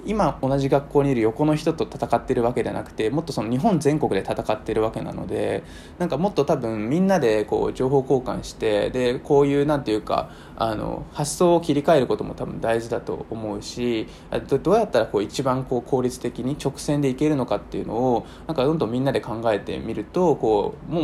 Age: 20-39